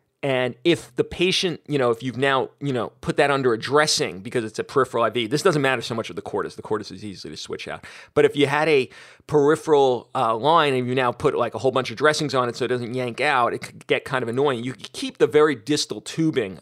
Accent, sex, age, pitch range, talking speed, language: American, male, 30-49, 120-150 Hz, 265 wpm, English